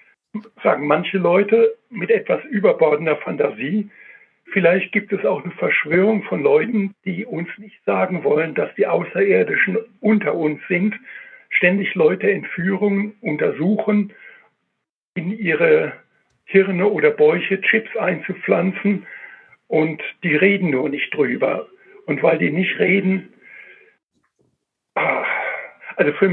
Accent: German